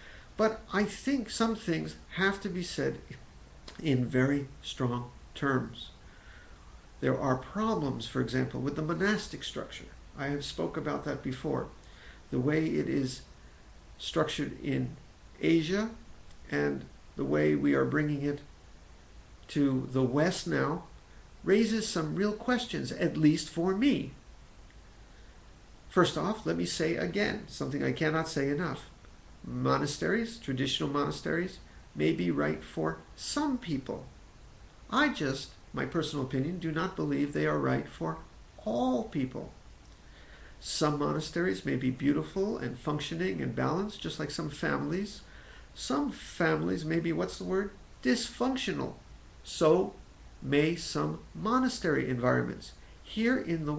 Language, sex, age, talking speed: English, male, 50-69, 130 wpm